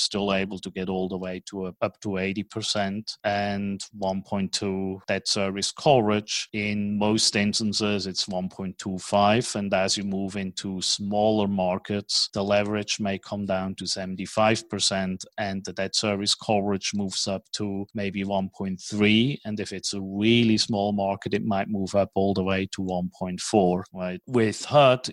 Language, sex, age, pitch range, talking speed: English, male, 30-49, 95-105 Hz, 155 wpm